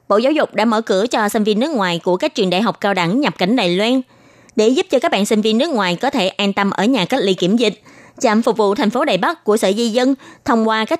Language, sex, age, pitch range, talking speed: Vietnamese, female, 20-39, 195-265 Hz, 300 wpm